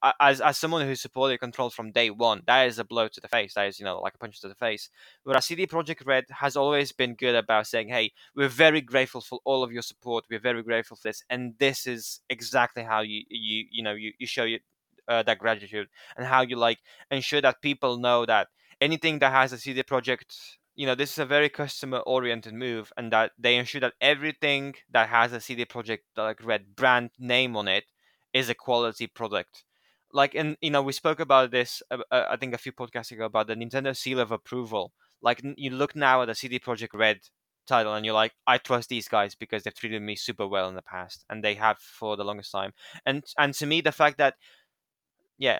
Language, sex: English, male